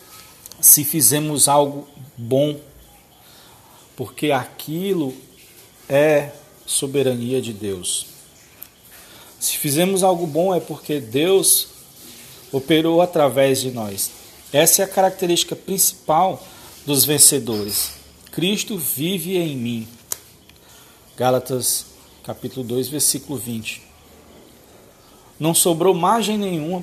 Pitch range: 125-175 Hz